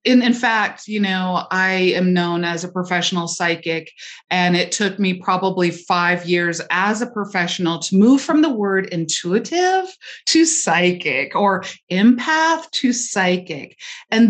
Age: 30-49